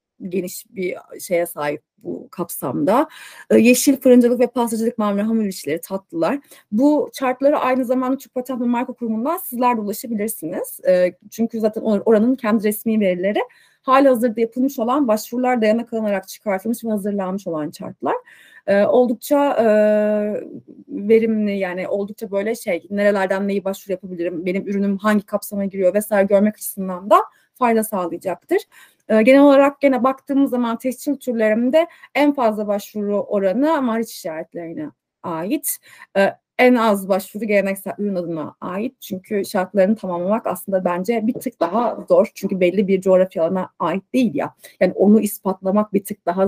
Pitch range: 195-250 Hz